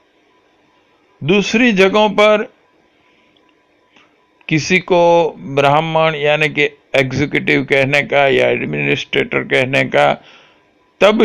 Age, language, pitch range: 60-79, Hindi, 125-175 Hz